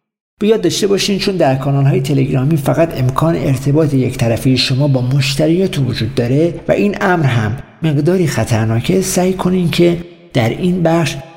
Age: 50-69